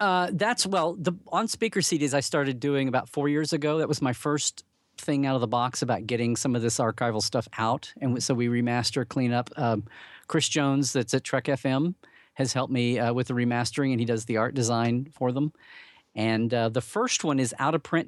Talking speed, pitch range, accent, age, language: 225 wpm, 115-145 Hz, American, 50-69, English